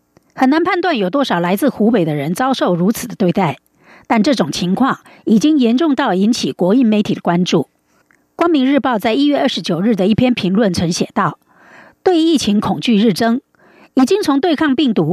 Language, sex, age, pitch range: German, female, 50-69, 190-280 Hz